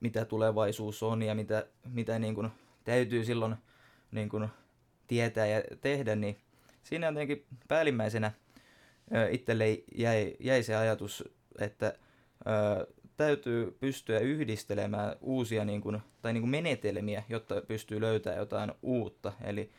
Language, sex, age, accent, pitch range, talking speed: Finnish, male, 20-39, native, 105-115 Hz, 125 wpm